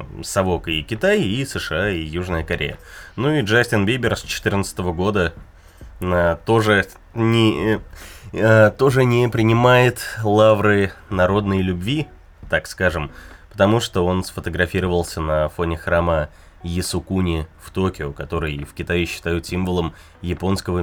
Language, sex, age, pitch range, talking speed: Russian, male, 20-39, 85-110 Hz, 120 wpm